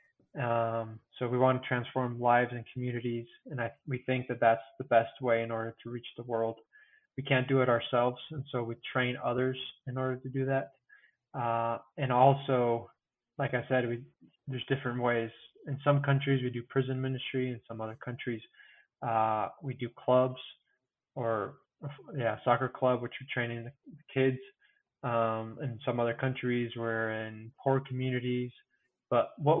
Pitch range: 115-130 Hz